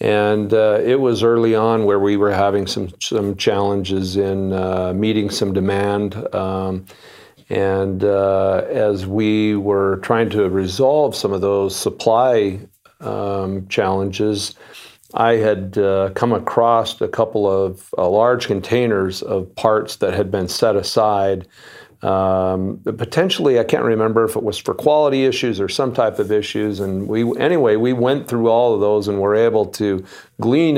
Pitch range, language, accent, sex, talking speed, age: 95-110 Hz, English, American, male, 160 wpm, 50-69